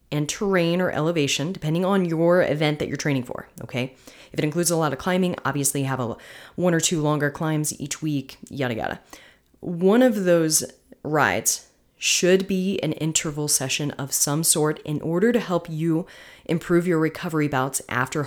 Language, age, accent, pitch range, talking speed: English, 30-49, American, 140-175 Hz, 175 wpm